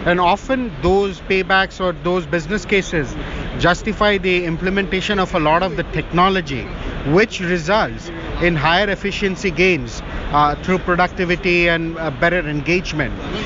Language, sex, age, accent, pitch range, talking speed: English, male, 50-69, Indian, 165-200 Hz, 135 wpm